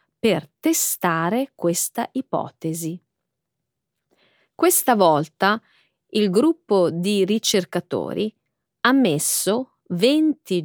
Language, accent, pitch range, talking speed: Italian, native, 175-270 Hz, 75 wpm